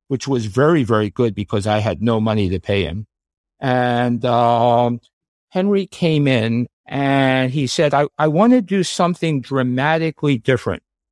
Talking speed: 155 wpm